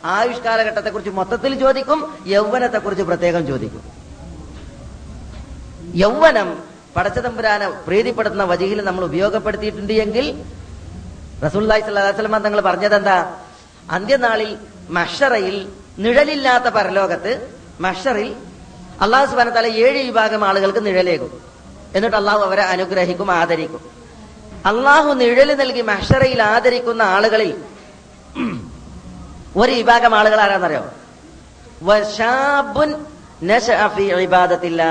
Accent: native